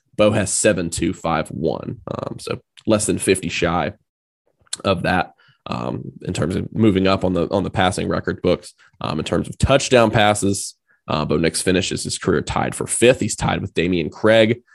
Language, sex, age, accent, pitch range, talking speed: English, male, 20-39, American, 95-110 Hz, 190 wpm